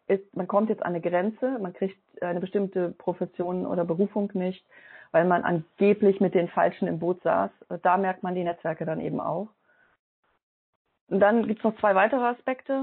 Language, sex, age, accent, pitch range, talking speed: German, female, 30-49, German, 180-215 Hz, 185 wpm